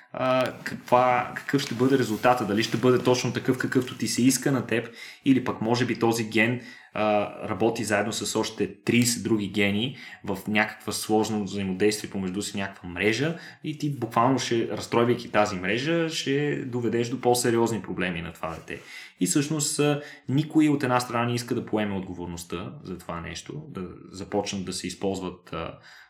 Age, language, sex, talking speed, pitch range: 20-39, Bulgarian, male, 170 wpm, 100-125 Hz